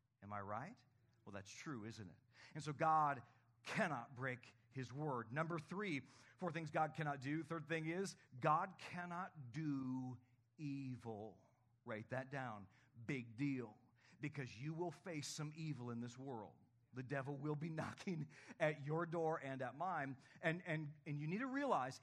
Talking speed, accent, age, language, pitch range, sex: 165 wpm, American, 40-59, English, 125-180 Hz, male